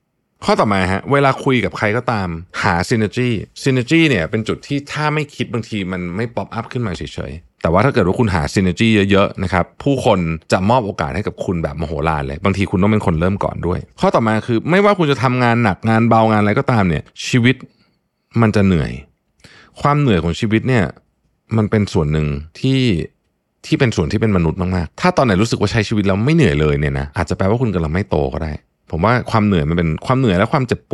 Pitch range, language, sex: 85-125 Hz, Thai, male